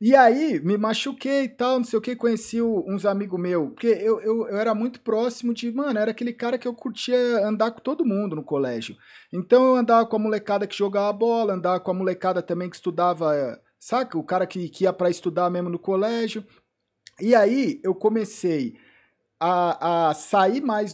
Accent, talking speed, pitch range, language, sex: Brazilian, 205 wpm, 175-235 Hz, Portuguese, male